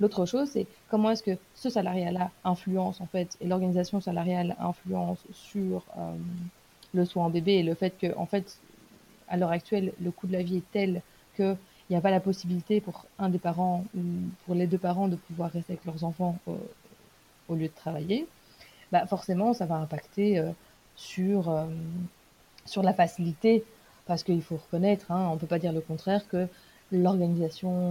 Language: French